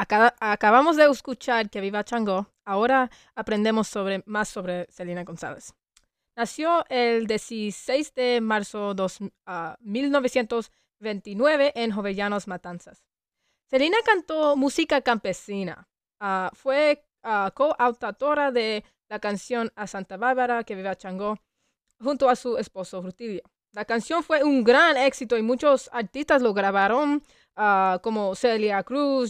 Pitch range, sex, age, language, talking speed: 205-260 Hz, female, 20-39, English, 115 wpm